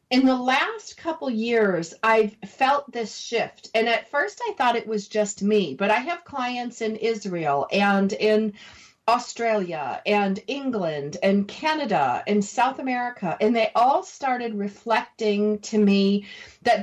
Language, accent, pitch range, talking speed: English, American, 200-245 Hz, 150 wpm